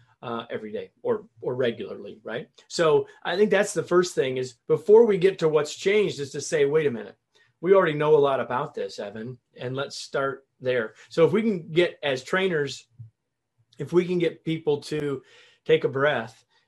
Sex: male